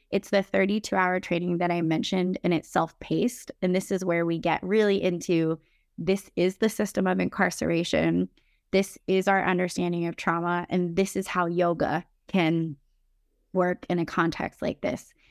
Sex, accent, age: female, American, 20-39